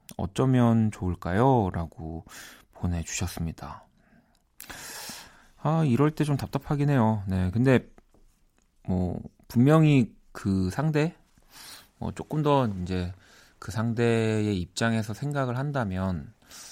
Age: 30-49